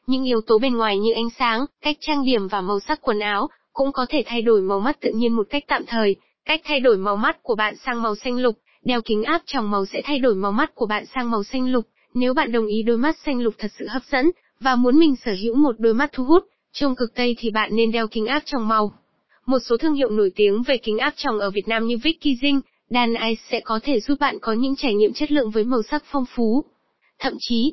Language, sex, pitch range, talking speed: Vietnamese, female, 220-275 Hz, 270 wpm